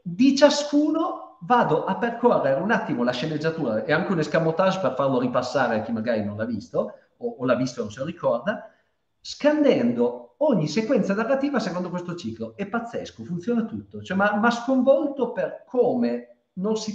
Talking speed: 175 wpm